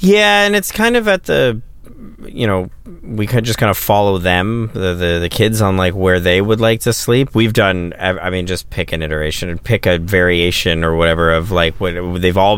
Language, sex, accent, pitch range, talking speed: English, male, American, 90-110 Hz, 235 wpm